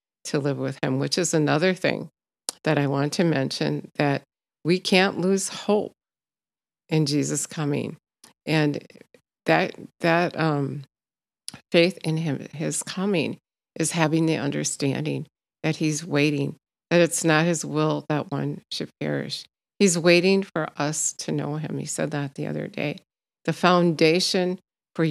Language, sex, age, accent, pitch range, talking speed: English, female, 50-69, American, 145-170 Hz, 150 wpm